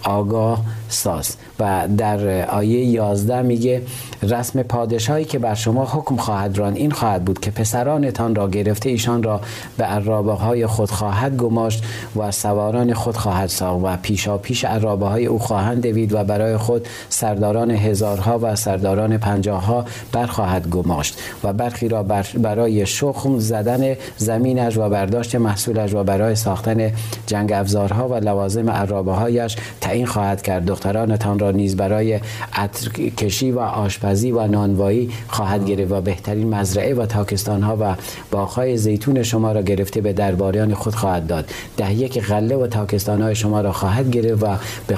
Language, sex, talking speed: Persian, male, 155 wpm